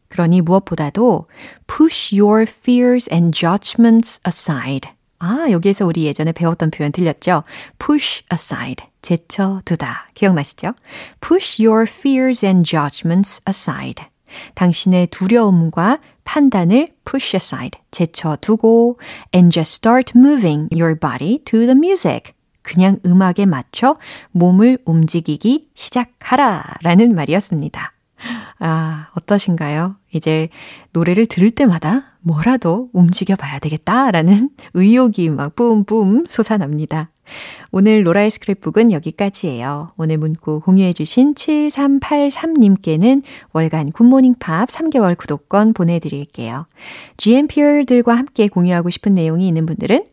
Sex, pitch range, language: female, 160-235 Hz, Korean